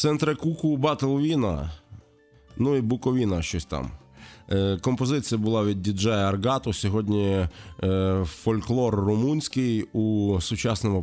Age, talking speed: 20-39, 100 wpm